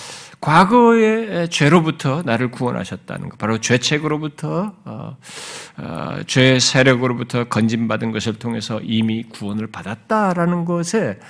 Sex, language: male, Korean